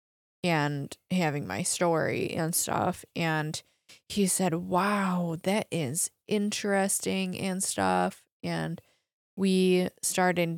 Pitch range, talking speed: 155-185 Hz, 100 wpm